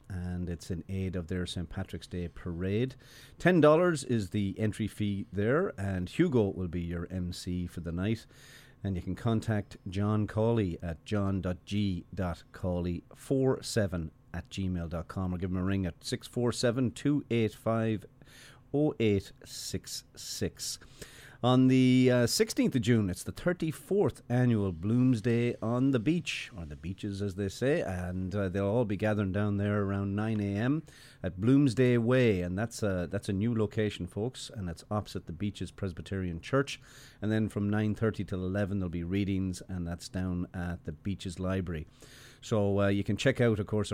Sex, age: male, 40-59